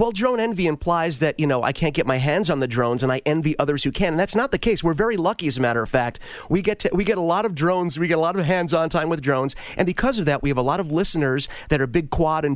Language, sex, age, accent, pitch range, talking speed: English, male, 40-59, American, 145-185 Hz, 320 wpm